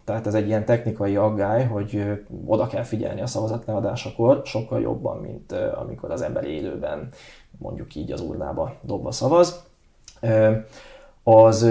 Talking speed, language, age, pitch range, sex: 140 wpm, Hungarian, 20-39, 105-115 Hz, male